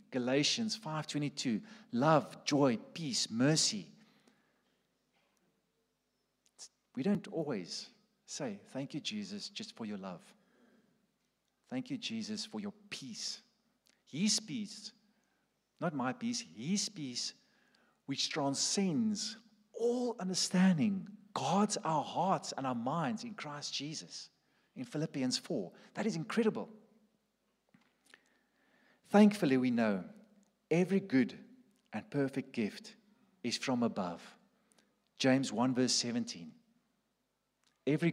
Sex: male